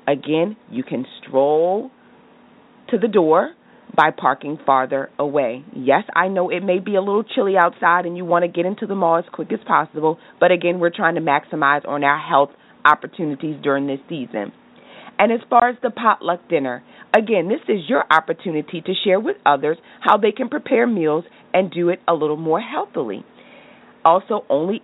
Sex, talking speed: female, 185 wpm